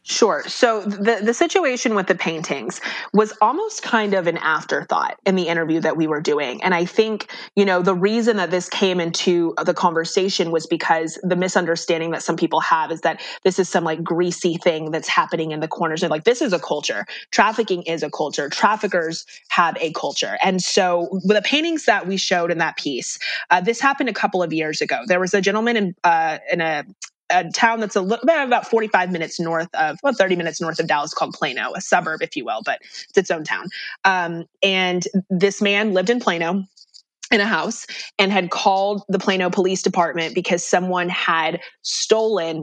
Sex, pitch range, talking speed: female, 170-215 Hz, 205 wpm